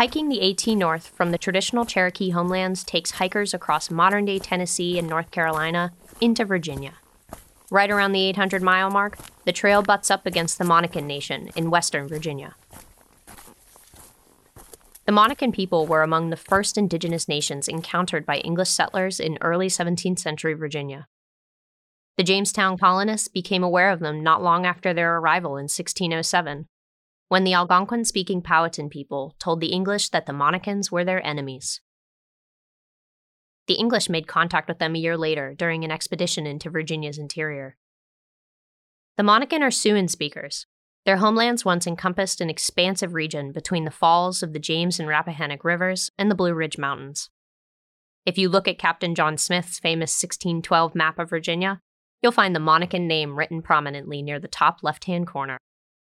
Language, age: English, 20-39